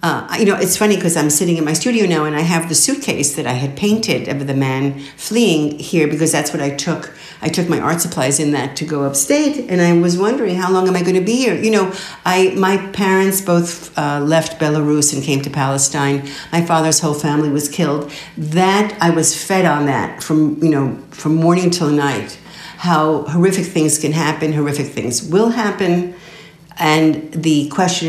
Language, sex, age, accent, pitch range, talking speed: English, female, 60-79, American, 145-175 Hz, 205 wpm